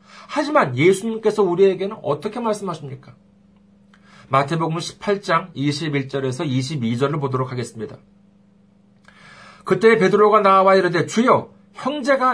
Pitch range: 150-210 Hz